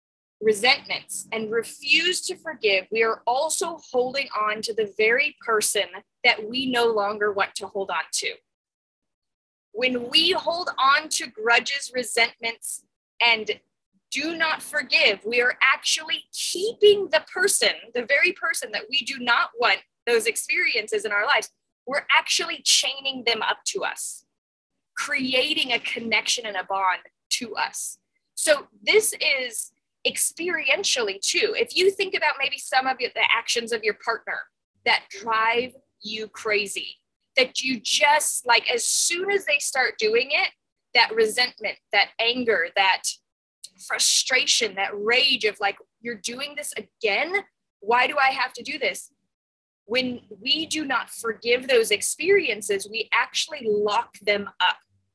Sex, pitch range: female, 220-330 Hz